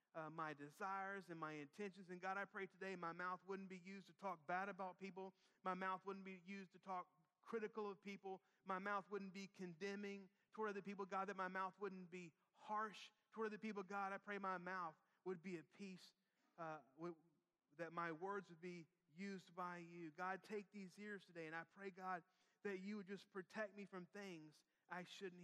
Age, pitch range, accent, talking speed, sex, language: 30-49, 180-200 Hz, American, 205 wpm, male, English